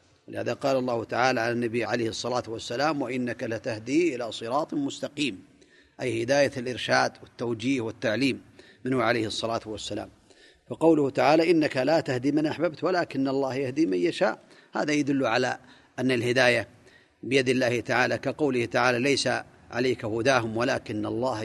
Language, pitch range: Arabic, 115-150 Hz